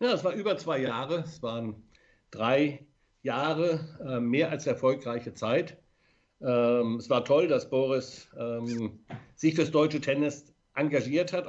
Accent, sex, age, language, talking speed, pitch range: German, male, 60-79, German, 145 wpm, 115-150 Hz